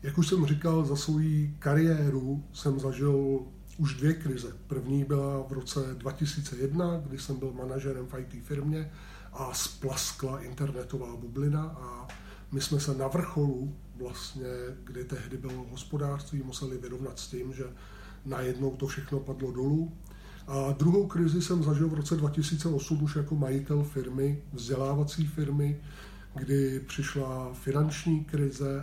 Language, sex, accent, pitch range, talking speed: Czech, male, native, 135-150 Hz, 140 wpm